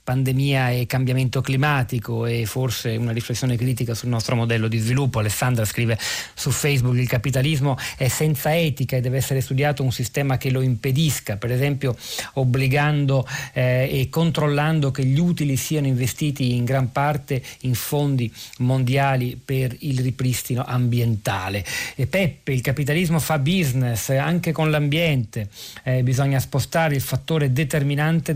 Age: 40-59